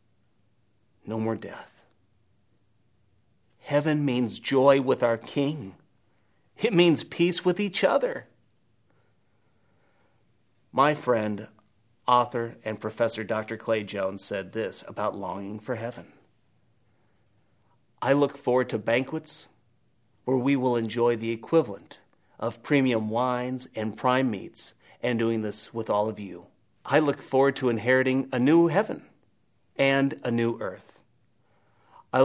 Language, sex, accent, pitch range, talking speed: English, male, American, 110-130 Hz, 125 wpm